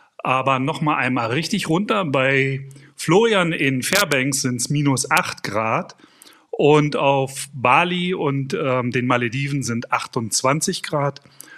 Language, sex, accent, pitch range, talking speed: German, male, German, 140-180 Hz, 130 wpm